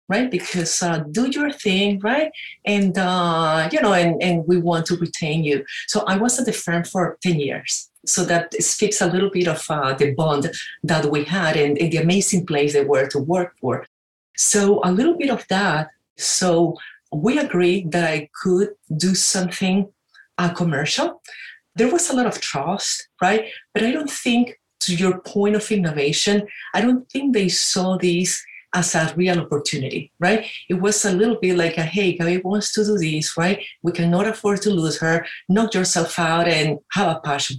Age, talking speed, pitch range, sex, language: 40-59, 190 wpm, 170-205 Hz, female, English